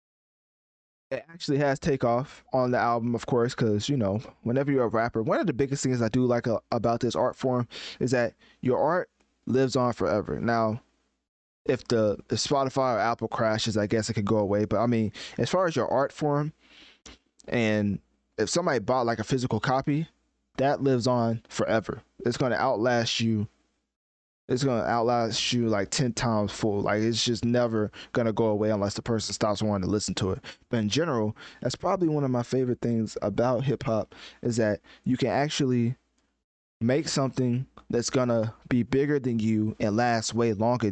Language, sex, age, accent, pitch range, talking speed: English, male, 20-39, American, 110-130 Hz, 190 wpm